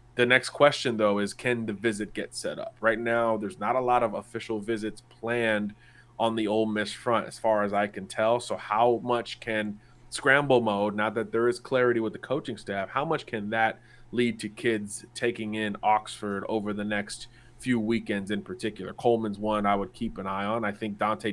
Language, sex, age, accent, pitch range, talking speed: English, male, 20-39, American, 105-120 Hz, 210 wpm